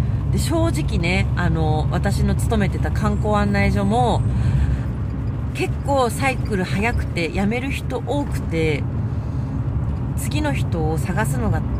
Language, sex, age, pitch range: Japanese, female, 40-59, 115-165 Hz